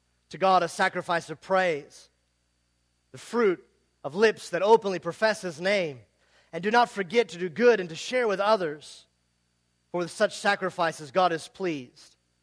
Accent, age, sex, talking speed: American, 30-49, male, 165 wpm